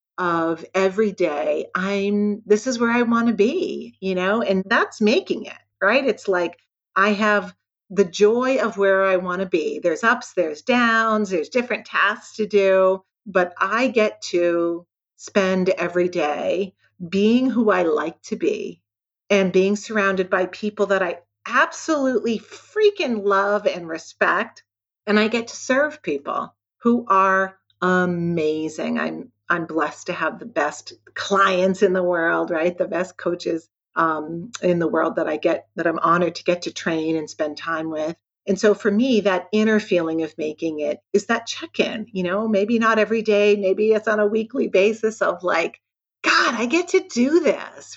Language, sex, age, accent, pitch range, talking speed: English, female, 40-59, American, 170-215 Hz, 175 wpm